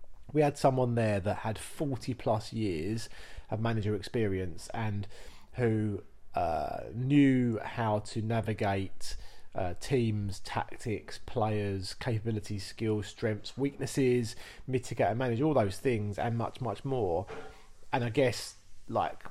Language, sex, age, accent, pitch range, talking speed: English, male, 30-49, British, 105-130 Hz, 125 wpm